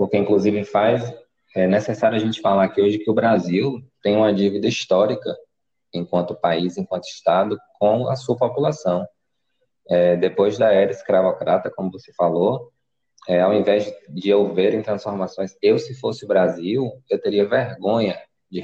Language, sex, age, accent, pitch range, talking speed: Portuguese, male, 20-39, Brazilian, 95-110 Hz, 165 wpm